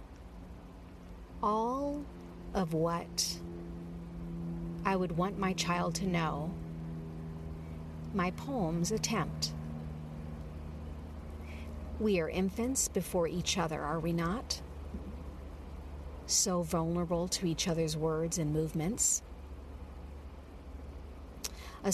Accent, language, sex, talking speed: American, English, female, 85 wpm